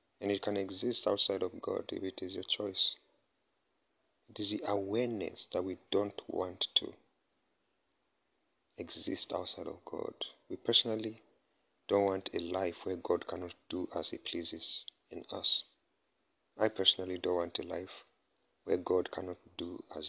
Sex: male